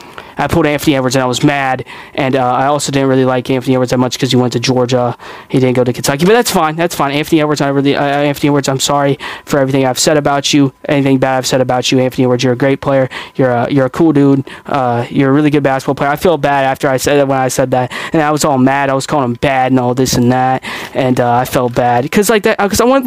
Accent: American